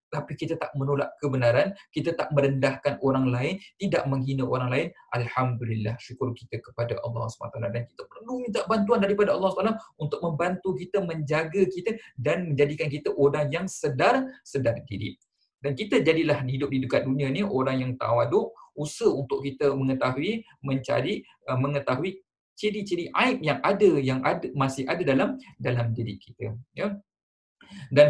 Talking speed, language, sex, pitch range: 150 wpm, Malay, male, 125-185 Hz